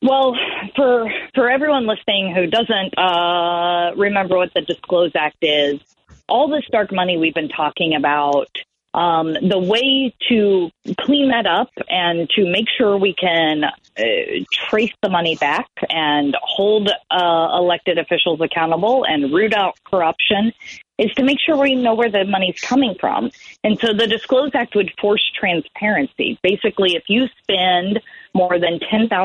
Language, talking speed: English, 150 wpm